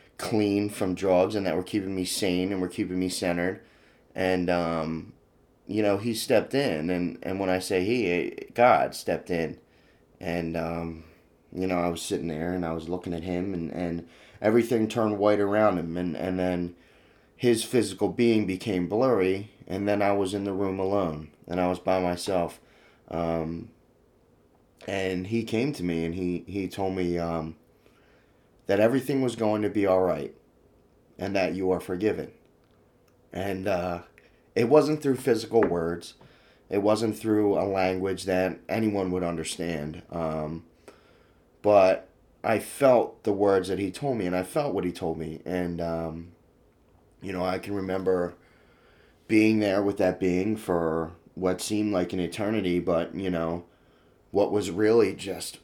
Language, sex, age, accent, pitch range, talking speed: English, male, 20-39, American, 85-105 Hz, 165 wpm